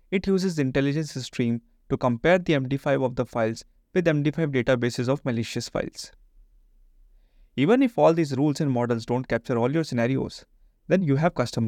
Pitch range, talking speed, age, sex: 120-165 Hz, 175 wpm, 30-49, male